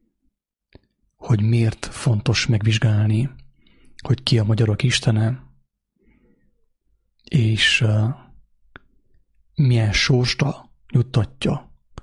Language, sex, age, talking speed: English, male, 30-49, 65 wpm